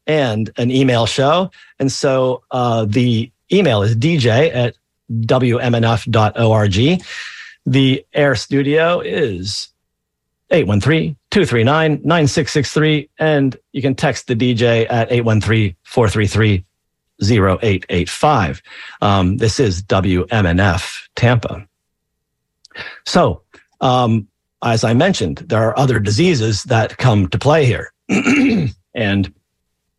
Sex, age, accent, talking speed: male, 40-59, American, 90 wpm